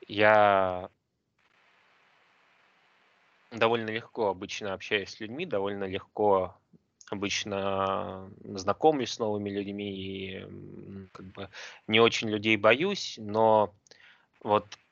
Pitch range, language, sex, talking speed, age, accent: 95-110 Hz, Russian, male, 95 wpm, 20-39, native